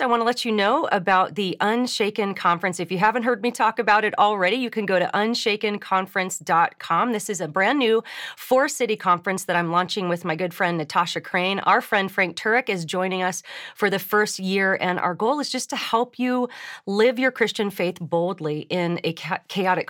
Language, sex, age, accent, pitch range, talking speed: English, female, 30-49, American, 175-215 Hz, 200 wpm